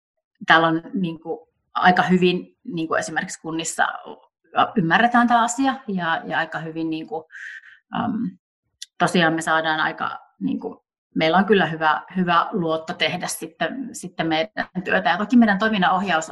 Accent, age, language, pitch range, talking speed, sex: native, 30-49, Finnish, 155-195 Hz, 145 wpm, female